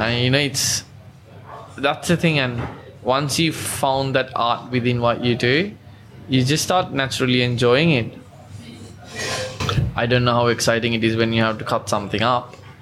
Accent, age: Indian, 20-39